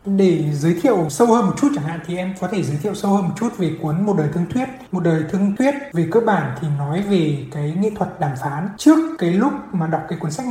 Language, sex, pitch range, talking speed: Vietnamese, male, 155-195 Hz, 275 wpm